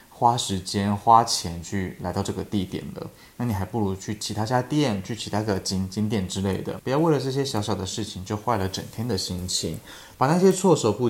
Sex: male